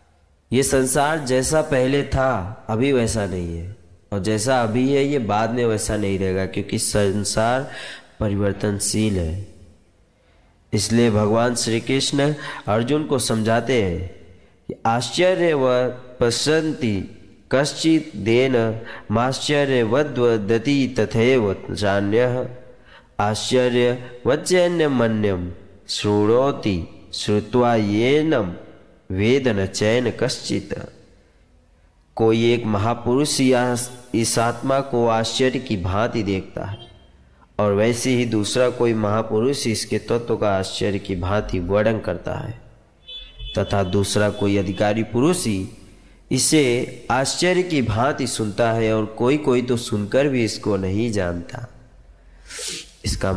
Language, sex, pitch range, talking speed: Hindi, male, 100-125 Hz, 110 wpm